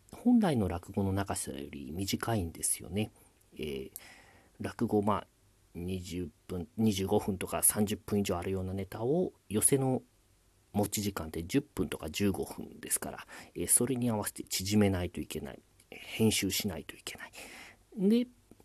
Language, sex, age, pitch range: Japanese, male, 40-59, 95-115 Hz